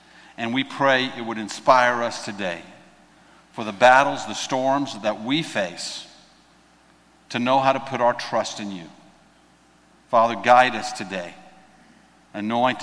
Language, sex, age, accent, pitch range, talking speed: English, male, 50-69, American, 110-150 Hz, 140 wpm